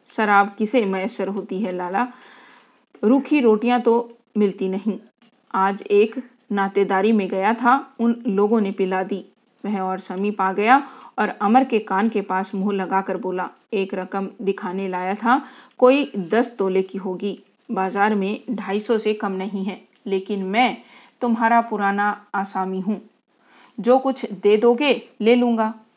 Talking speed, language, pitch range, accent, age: 150 wpm, Hindi, 195-235 Hz, native, 40-59